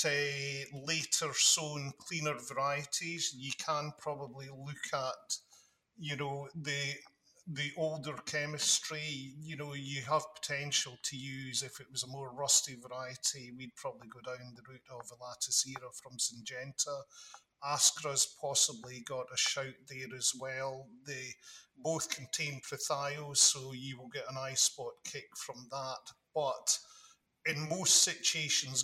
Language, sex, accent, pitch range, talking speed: English, male, British, 130-145 Hz, 140 wpm